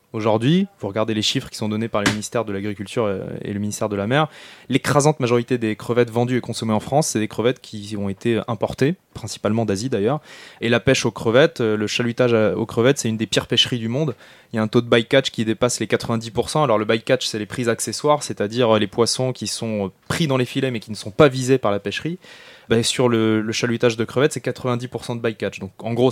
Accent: French